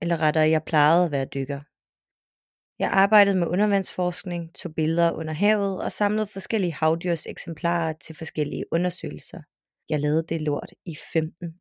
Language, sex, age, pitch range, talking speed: Danish, female, 20-39, 160-190 Hz, 145 wpm